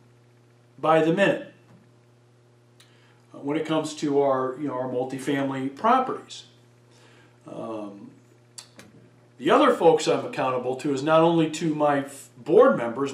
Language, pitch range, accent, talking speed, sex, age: English, 120-175 Hz, American, 130 wpm, male, 50-69